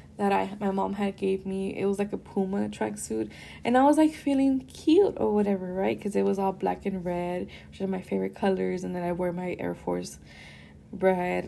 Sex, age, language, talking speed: female, 10-29, English, 220 wpm